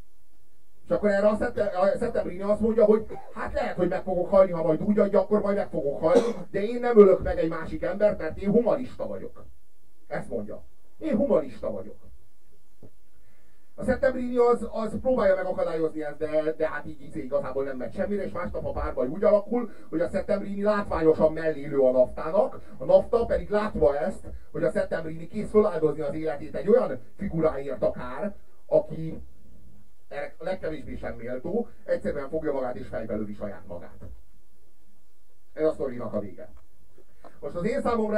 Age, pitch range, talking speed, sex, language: 40-59, 155-210 Hz, 165 wpm, male, Hungarian